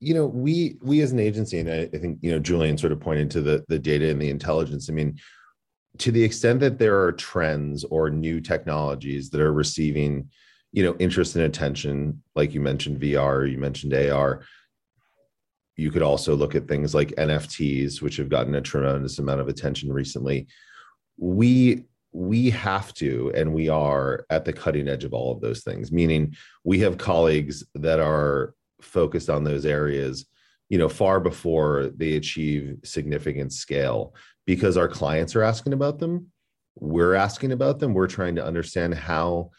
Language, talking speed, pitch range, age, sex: English, 180 wpm, 75-90 Hz, 30-49, male